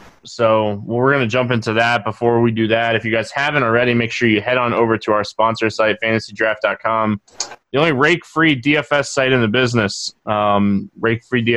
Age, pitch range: 20-39, 110-130 Hz